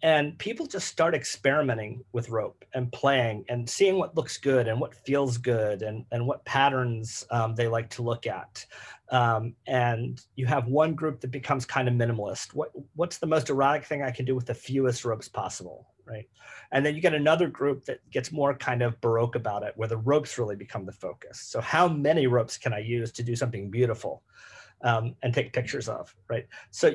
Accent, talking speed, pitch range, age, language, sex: American, 205 wpm, 120-150 Hz, 30-49, English, male